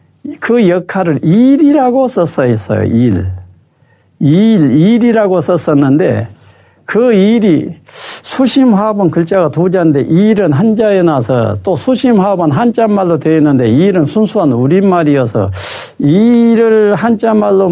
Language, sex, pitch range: Korean, male, 120-205 Hz